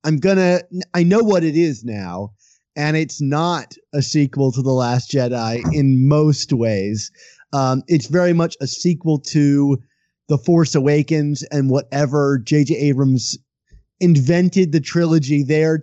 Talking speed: 145 wpm